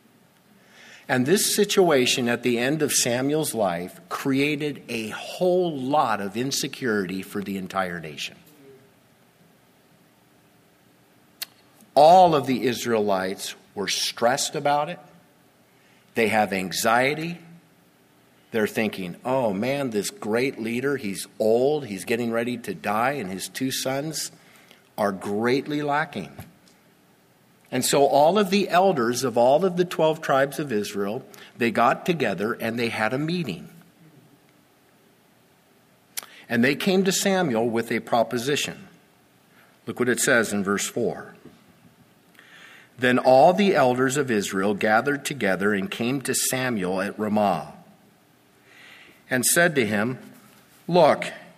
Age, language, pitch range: 50-69, English, 110-155 Hz